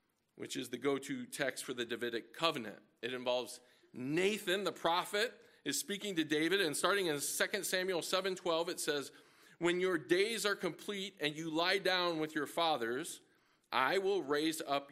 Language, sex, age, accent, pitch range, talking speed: English, male, 40-59, American, 130-165 Hz, 170 wpm